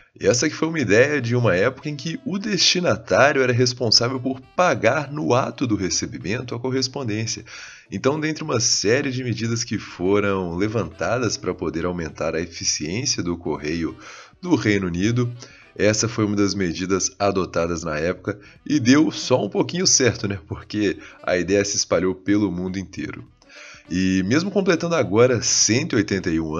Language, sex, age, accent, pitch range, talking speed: Portuguese, male, 30-49, Brazilian, 95-130 Hz, 155 wpm